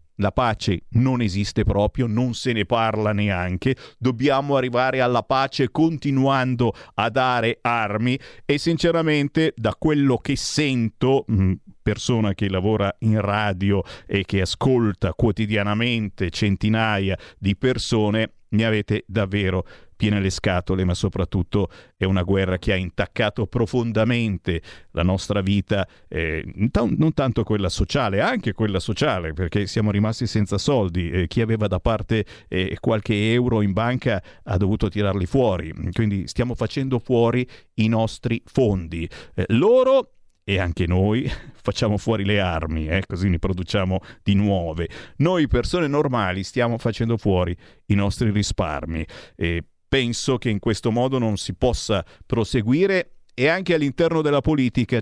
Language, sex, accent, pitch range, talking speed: Italian, male, native, 95-125 Hz, 140 wpm